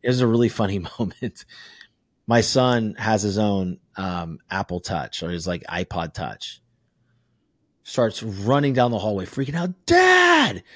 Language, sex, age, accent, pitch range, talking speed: English, male, 30-49, American, 110-170 Hz, 150 wpm